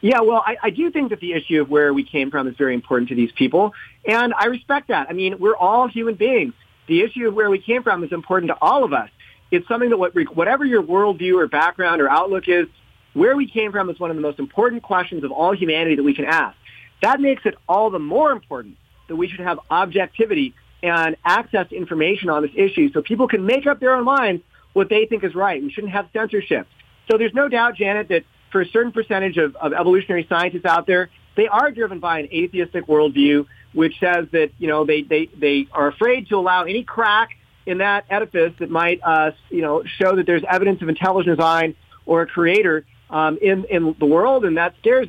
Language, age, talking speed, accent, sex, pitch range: English, 40-59, 230 wpm, American, male, 165-230 Hz